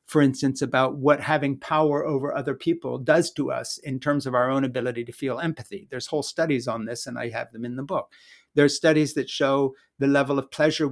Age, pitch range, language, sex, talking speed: 60-79, 125-150 Hz, English, male, 225 wpm